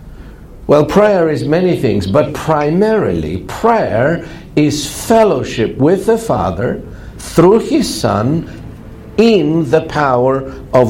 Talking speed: 110 wpm